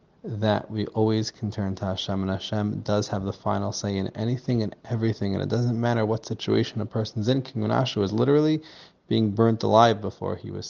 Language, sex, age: English, male, 20-39